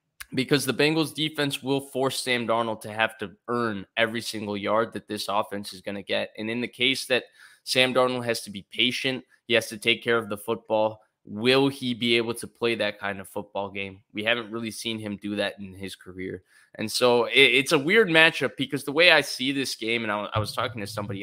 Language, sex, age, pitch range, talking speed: English, male, 20-39, 105-135 Hz, 230 wpm